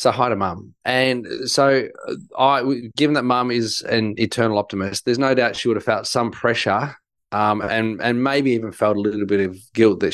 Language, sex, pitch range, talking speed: English, male, 105-135 Hz, 205 wpm